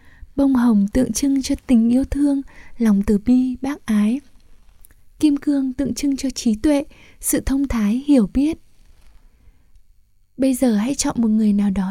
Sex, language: female, Japanese